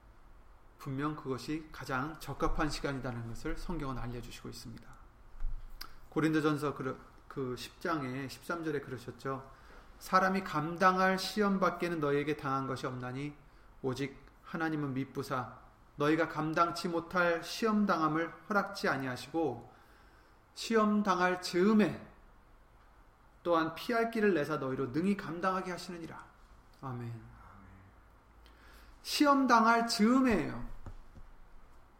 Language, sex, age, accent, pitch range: Korean, male, 30-49, native, 135-200 Hz